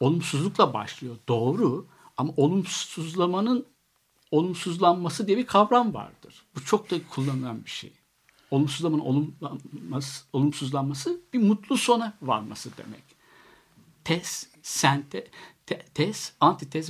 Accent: native